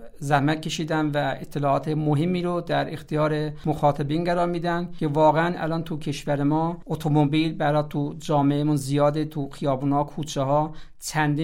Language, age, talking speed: Persian, 50-69, 145 wpm